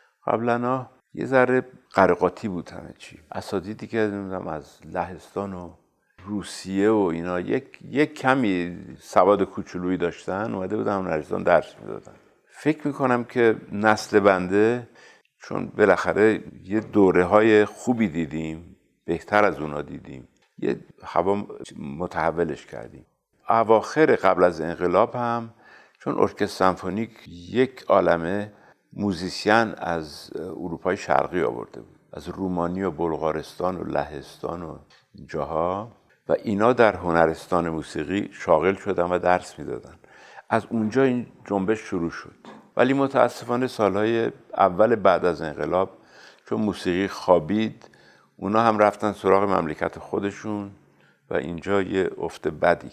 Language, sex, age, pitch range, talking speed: Persian, male, 60-79, 90-110 Hz, 120 wpm